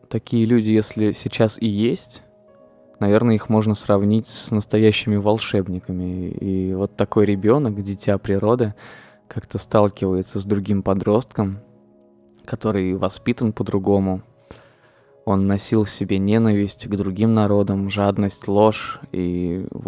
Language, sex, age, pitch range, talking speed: Russian, male, 20-39, 95-110 Hz, 120 wpm